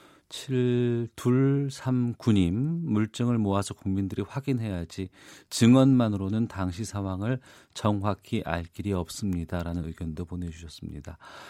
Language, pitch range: Korean, 95-130 Hz